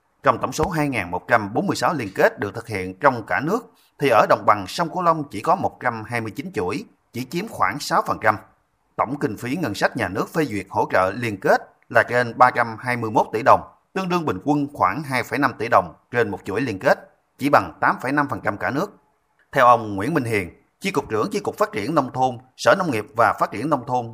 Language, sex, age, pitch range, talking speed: Vietnamese, male, 30-49, 110-155 Hz, 210 wpm